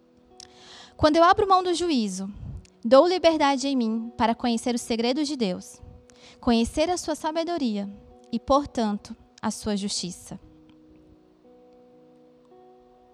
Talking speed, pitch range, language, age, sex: 115 wpm, 205-280 Hz, Portuguese, 20-39, female